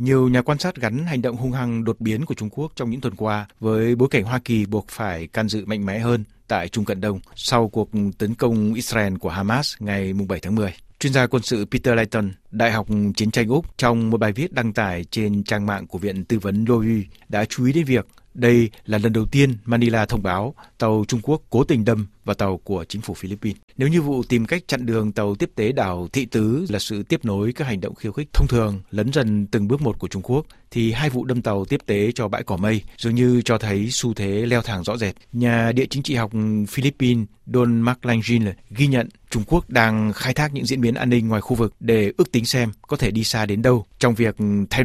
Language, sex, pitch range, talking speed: Vietnamese, male, 105-125 Hz, 245 wpm